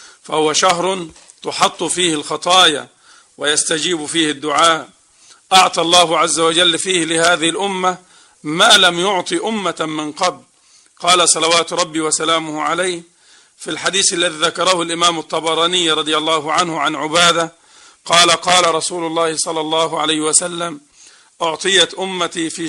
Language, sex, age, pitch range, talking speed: Arabic, male, 50-69, 155-175 Hz, 125 wpm